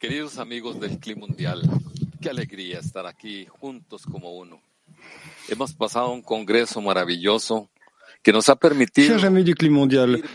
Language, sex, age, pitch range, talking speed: English, male, 50-69, 130-170 Hz, 150 wpm